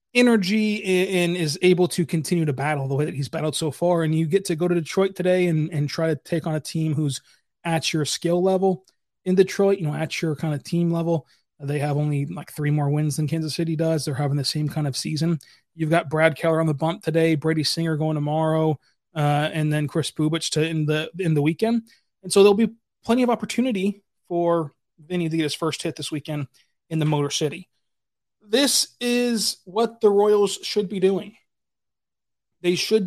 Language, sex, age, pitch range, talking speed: English, male, 20-39, 150-180 Hz, 210 wpm